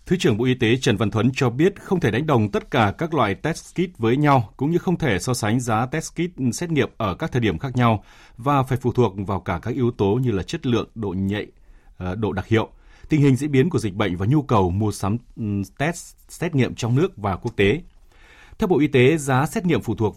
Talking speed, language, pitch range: 255 wpm, Vietnamese, 105-140 Hz